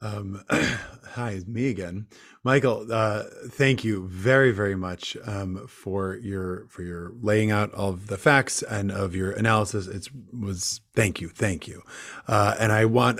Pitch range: 110-130 Hz